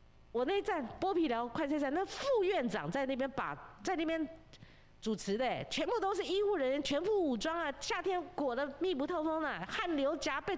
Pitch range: 235-345 Hz